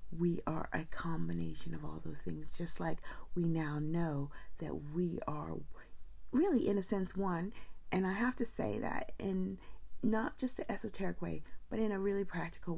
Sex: female